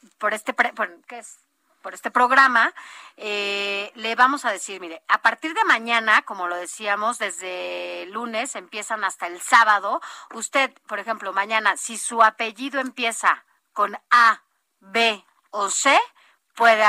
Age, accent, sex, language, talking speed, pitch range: 40-59, Mexican, female, Spanish, 150 wpm, 200-255 Hz